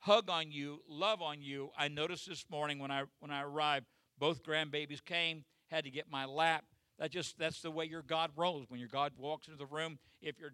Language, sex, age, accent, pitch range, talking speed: English, male, 50-69, American, 145-180 Hz, 230 wpm